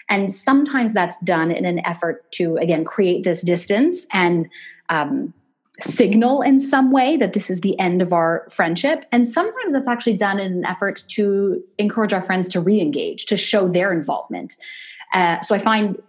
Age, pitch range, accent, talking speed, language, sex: 30-49, 180-245 Hz, American, 180 wpm, English, female